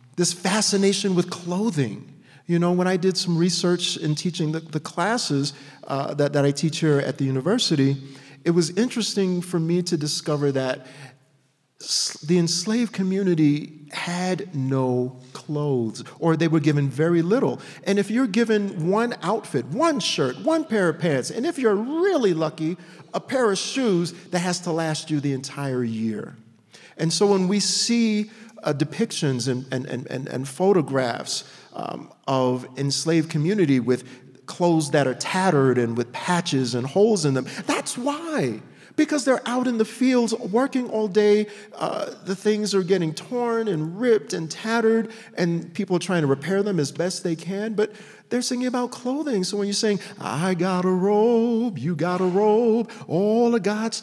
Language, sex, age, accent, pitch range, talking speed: English, male, 40-59, American, 150-215 Hz, 170 wpm